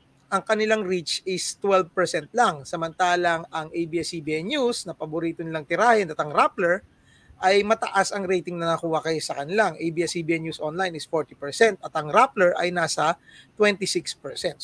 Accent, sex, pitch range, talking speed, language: native, male, 160-205 Hz, 150 wpm, Filipino